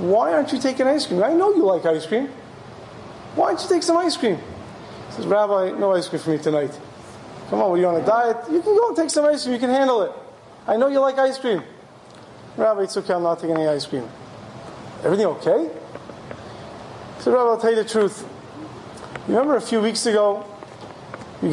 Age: 30-49